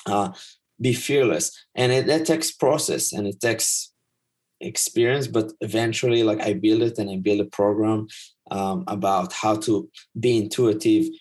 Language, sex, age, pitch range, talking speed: English, male, 30-49, 105-125 Hz, 155 wpm